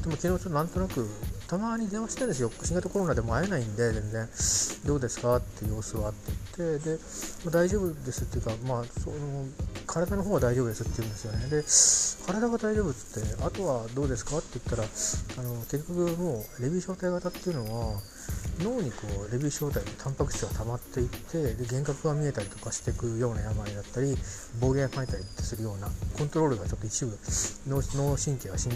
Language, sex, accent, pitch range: Japanese, male, native, 105-145 Hz